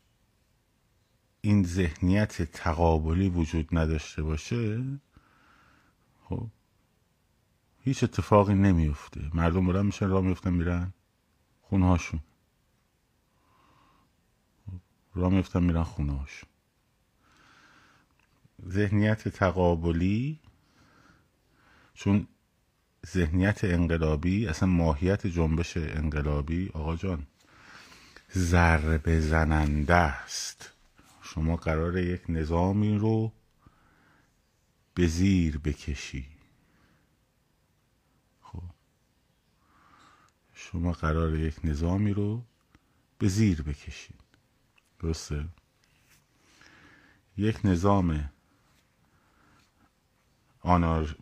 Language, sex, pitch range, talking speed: Persian, male, 80-105 Hz, 65 wpm